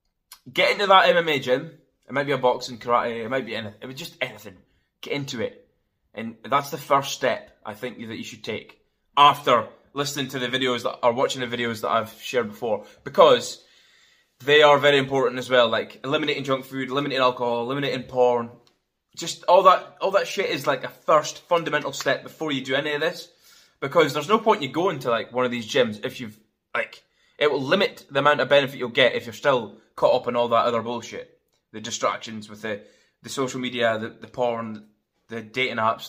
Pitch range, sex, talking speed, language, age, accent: 120-155 Hz, male, 210 wpm, English, 20-39, British